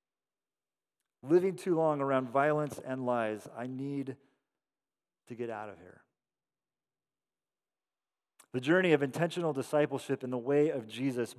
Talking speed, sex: 125 wpm, male